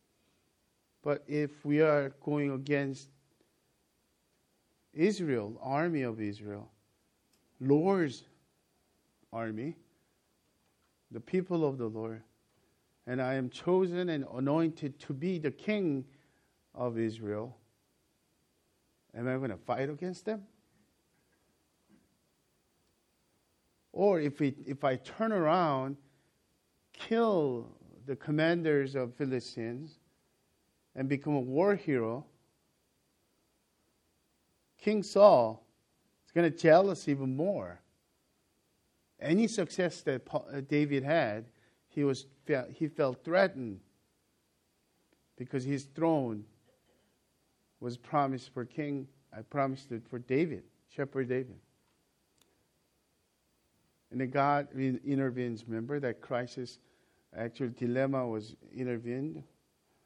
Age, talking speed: 50-69, 100 wpm